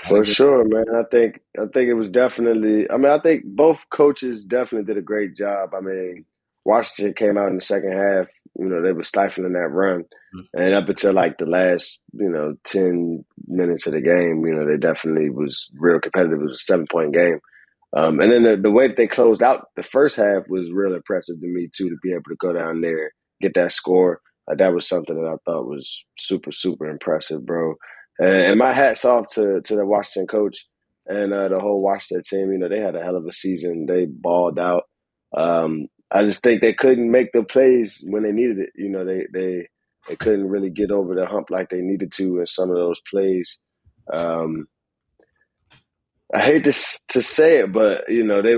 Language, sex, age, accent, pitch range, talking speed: English, male, 20-39, American, 90-110 Hz, 215 wpm